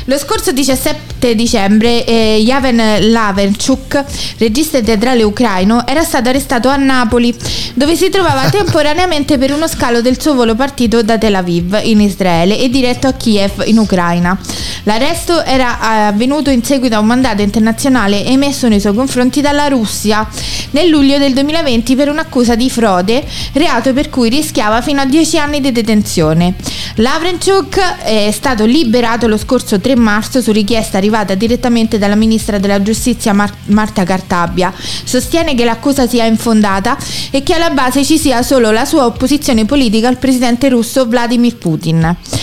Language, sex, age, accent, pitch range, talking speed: Italian, female, 20-39, native, 215-275 Hz, 155 wpm